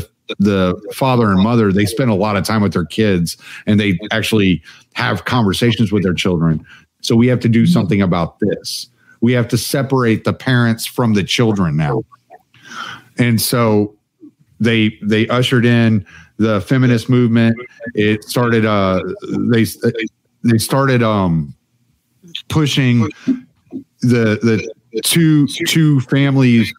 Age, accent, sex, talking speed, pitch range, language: 50-69, American, male, 135 wpm, 105-125 Hz, English